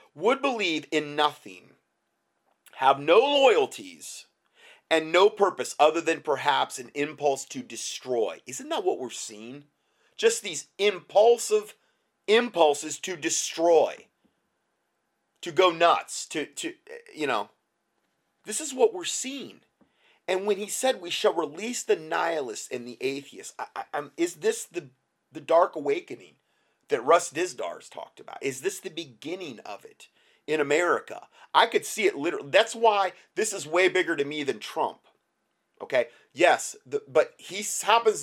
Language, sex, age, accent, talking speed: English, male, 30-49, American, 145 wpm